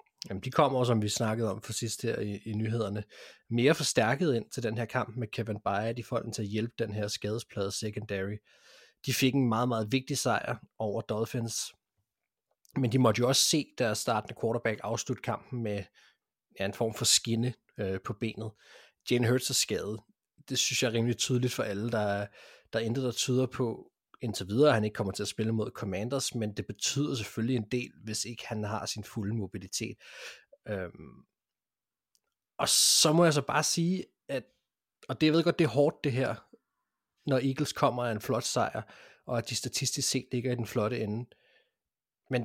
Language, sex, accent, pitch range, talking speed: Danish, male, native, 110-135 Hz, 200 wpm